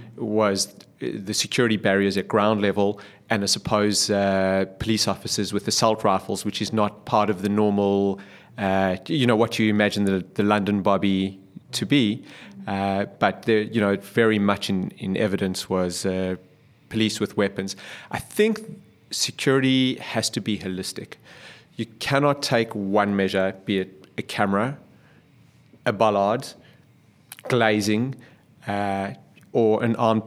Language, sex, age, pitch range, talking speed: English, male, 30-49, 100-115 Hz, 140 wpm